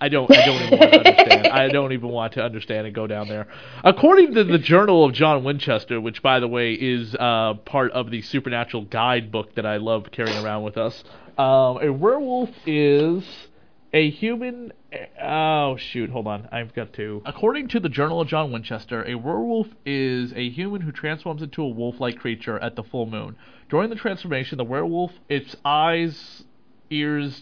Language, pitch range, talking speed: English, 120-155 Hz, 190 wpm